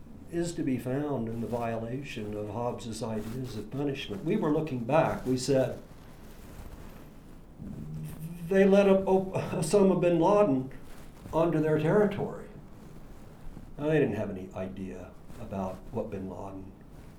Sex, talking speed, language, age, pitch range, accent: male, 120 wpm, English, 60-79, 100-140 Hz, American